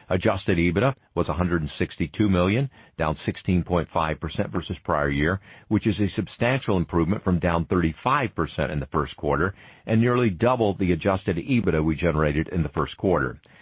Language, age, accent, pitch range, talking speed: English, 50-69, American, 85-110 Hz, 150 wpm